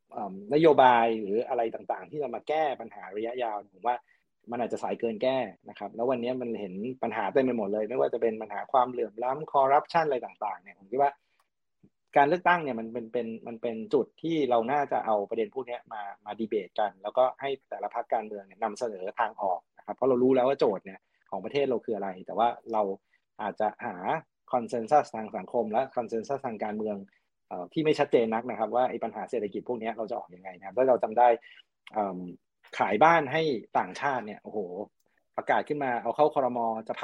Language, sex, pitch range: Thai, male, 110-135 Hz